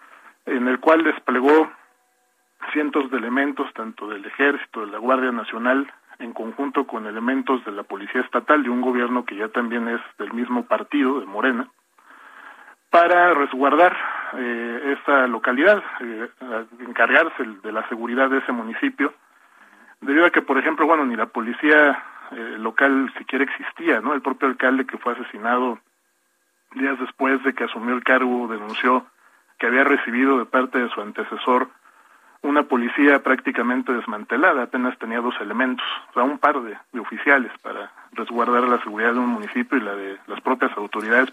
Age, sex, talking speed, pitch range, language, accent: 40-59, male, 160 wpm, 120-140 Hz, Spanish, Mexican